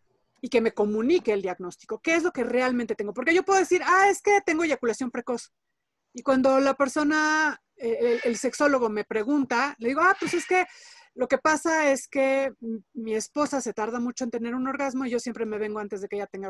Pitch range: 215-275 Hz